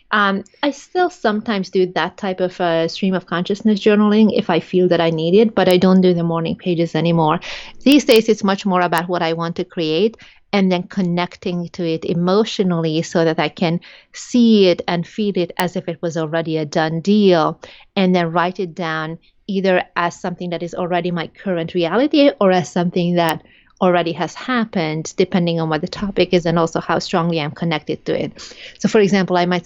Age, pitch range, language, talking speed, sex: 30-49, 170-195 Hz, English, 205 wpm, female